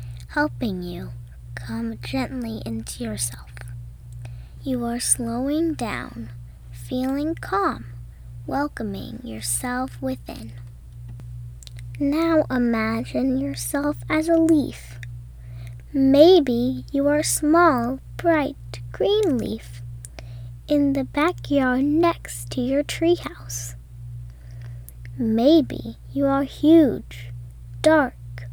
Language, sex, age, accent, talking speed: English, female, 10-29, American, 90 wpm